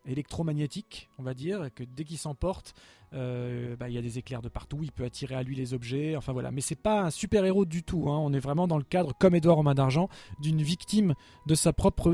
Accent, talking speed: French, 255 wpm